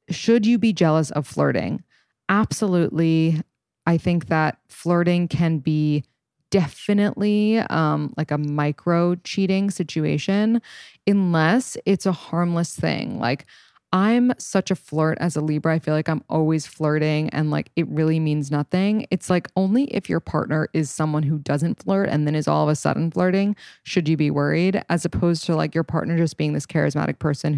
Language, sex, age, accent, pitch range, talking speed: English, female, 20-39, American, 150-195 Hz, 170 wpm